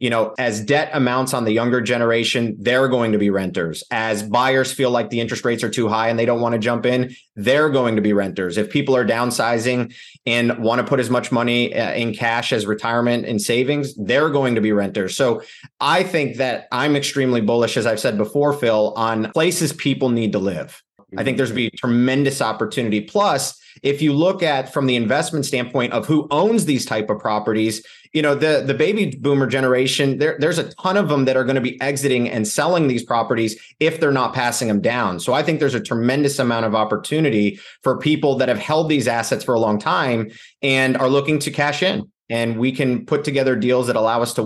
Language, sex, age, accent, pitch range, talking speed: English, male, 30-49, American, 115-140 Hz, 220 wpm